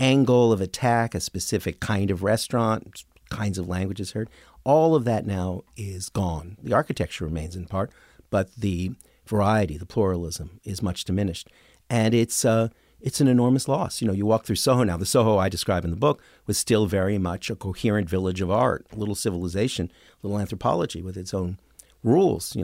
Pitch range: 90-115 Hz